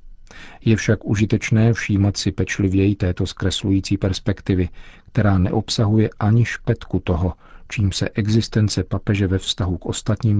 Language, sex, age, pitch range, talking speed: Czech, male, 50-69, 95-110 Hz, 125 wpm